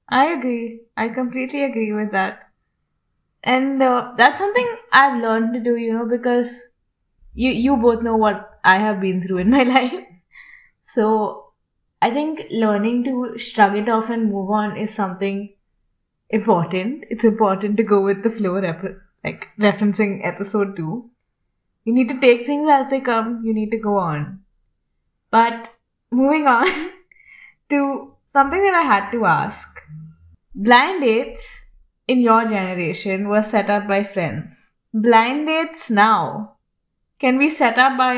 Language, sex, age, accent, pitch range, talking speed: English, female, 20-39, Indian, 205-255 Hz, 150 wpm